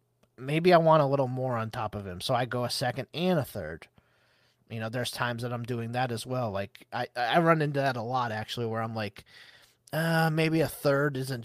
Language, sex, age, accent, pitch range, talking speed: English, male, 30-49, American, 115-145 Hz, 235 wpm